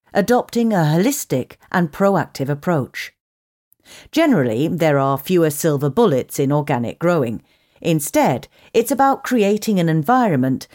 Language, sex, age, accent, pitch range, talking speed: English, female, 40-59, British, 135-215 Hz, 115 wpm